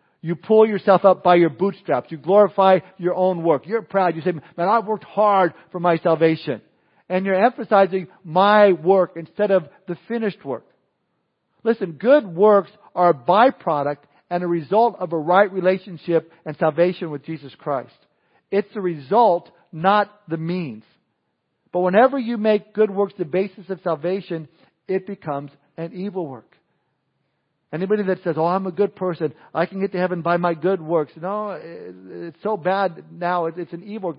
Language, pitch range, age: English, 160-200 Hz, 50-69